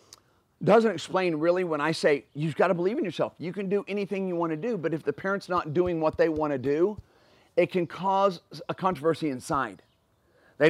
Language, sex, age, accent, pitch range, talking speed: English, male, 40-59, American, 140-180 Hz, 215 wpm